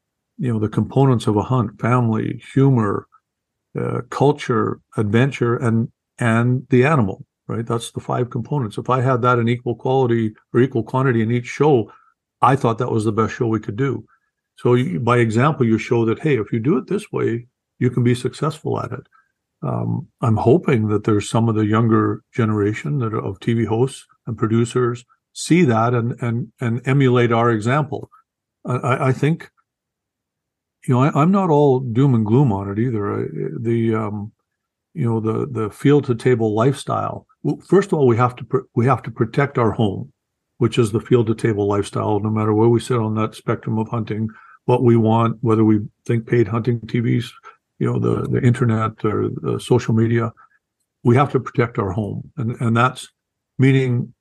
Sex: male